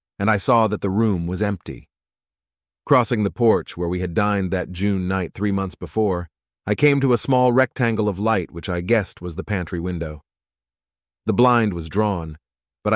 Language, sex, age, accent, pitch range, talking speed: English, male, 30-49, American, 80-110 Hz, 190 wpm